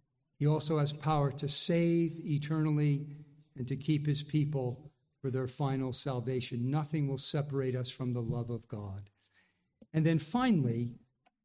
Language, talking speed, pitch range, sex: English, 145 wpm, 135-165 Hz, male